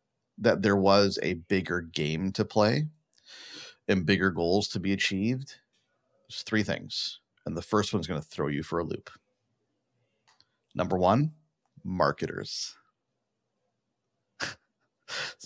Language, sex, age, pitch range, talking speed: English, male, 30-49, 95-125 Hz, 125 wpm